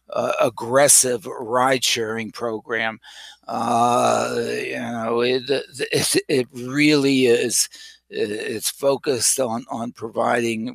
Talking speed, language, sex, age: 90 wpm, English, male, 60-79